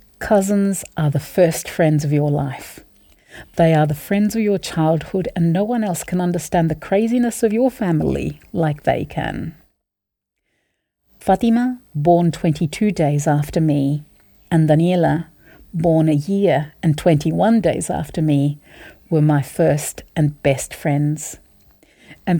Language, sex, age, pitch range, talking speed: English, female, 50-69, 145-185 Hz, 140 wpm